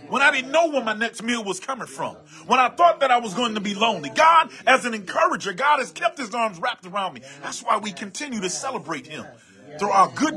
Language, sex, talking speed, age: English, male, 250 wpm, 30-49